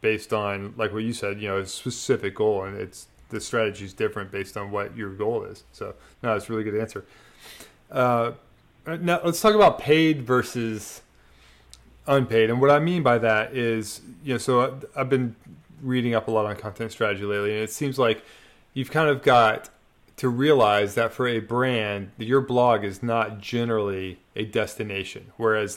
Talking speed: 185 wpm